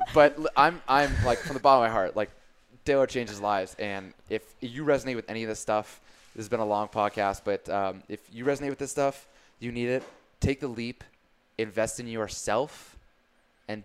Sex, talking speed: male, 205 wpm